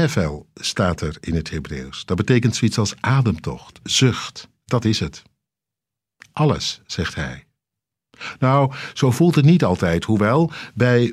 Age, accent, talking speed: 60-79, Dutch, 135 wpm